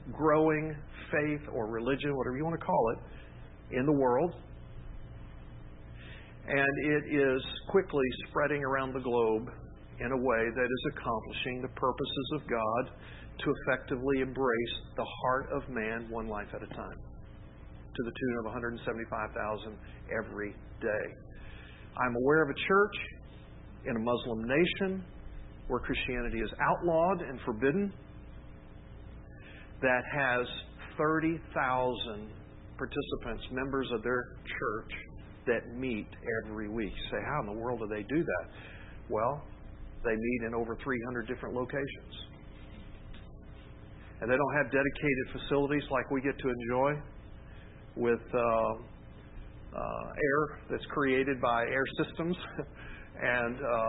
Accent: American